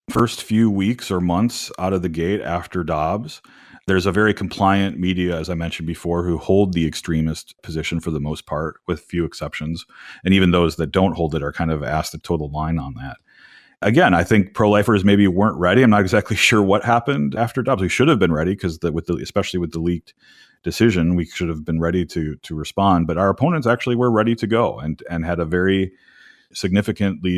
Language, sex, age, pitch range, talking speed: English, male, 30-49, 85-100 Hz, 215 wpm